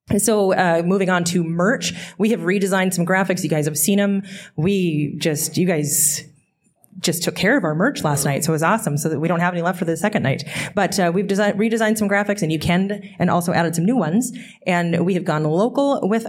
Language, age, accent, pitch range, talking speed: English, 20-39, American, 155-190 Hz, 240 wpm